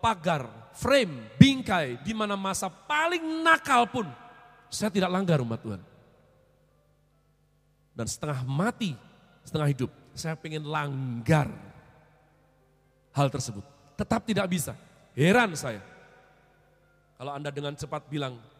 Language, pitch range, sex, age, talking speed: Indonesian, 125-180 Hz, male, 40-59, 105 wpm